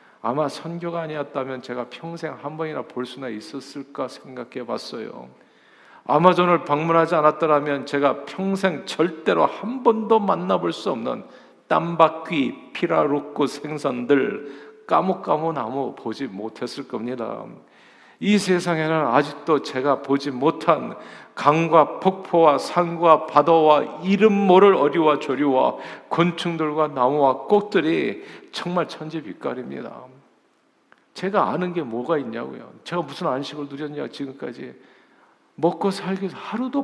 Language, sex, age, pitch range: Korean, male, 50-69, 135-170 Hz